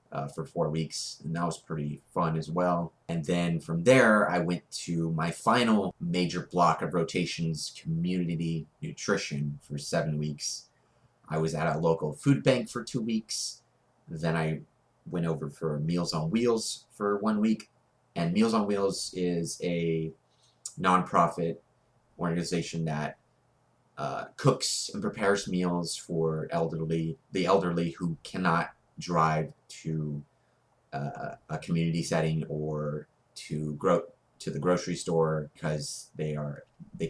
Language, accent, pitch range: English, American, 80-100 Hz